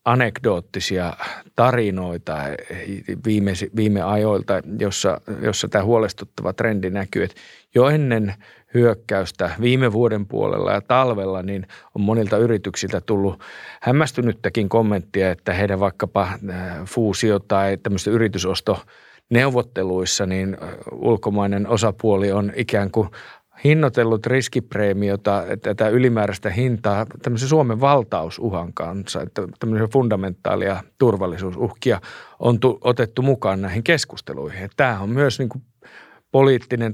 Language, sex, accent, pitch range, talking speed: Finnish, male, native, 100-125 Hz, 100 wpm